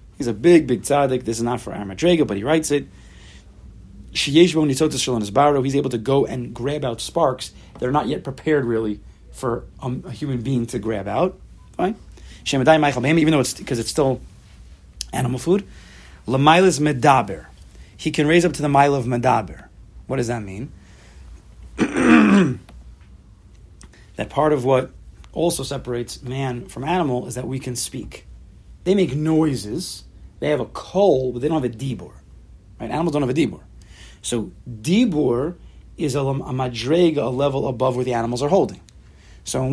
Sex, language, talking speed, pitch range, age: male, English, 160 wpm, 110-155 Hz, 30-49